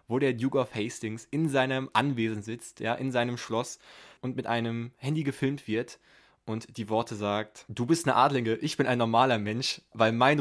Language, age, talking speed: German, 20-39, 195 wpm